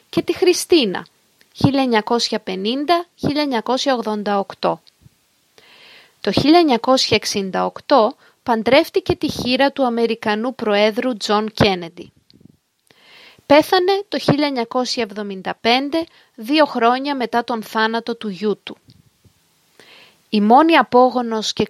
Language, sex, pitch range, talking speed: Greek, female, 215-285 Hz, 80 wpm